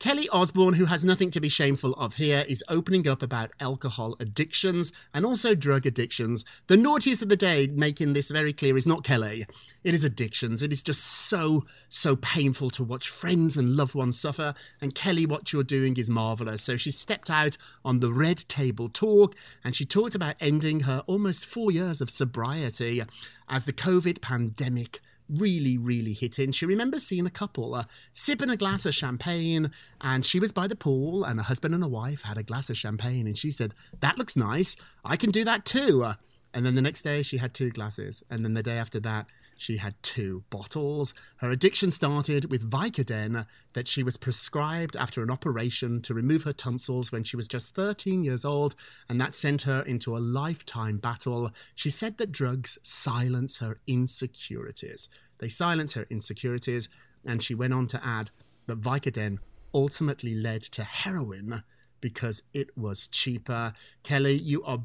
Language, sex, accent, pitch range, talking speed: English, male, British, 120-155 Hz, 185 wpm